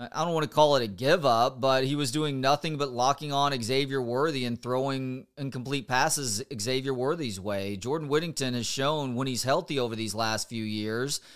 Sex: male